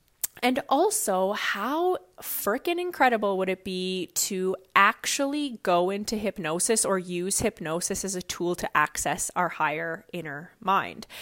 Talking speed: 135 wpm